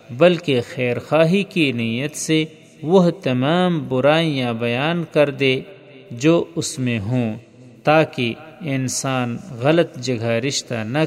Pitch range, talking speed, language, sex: 125-160 Hz, 120 wpm, Urdu, male